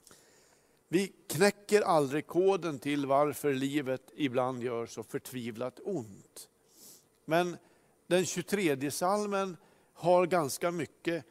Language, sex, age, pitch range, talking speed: Swedish, male, 50-69, 140-195 Hz, 95 wpm